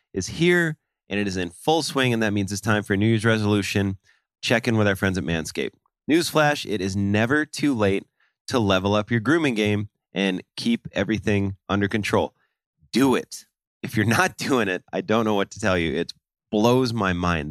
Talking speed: 205 wpm